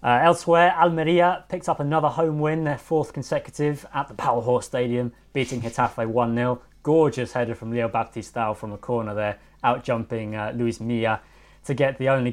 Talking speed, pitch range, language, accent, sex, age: 180 wpm, 115-145 Hz, English, British, male, 20-39